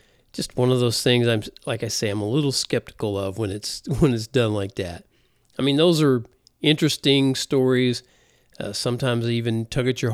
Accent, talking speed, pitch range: American, 200 wpm, 115-160 Hz